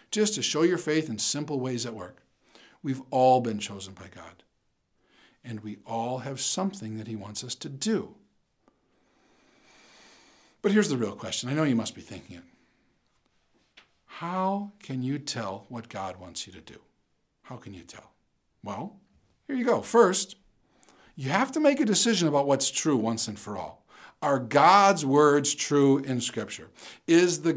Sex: male